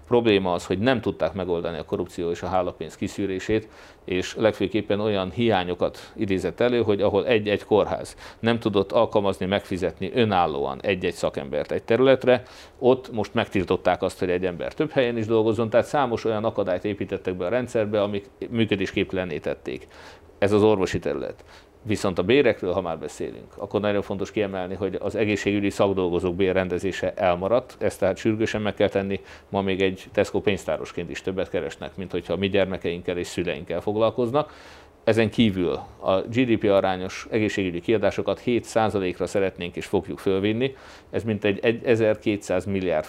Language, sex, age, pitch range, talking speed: Hungarian, male, 50-69, 95-110 Hz, 150 wpm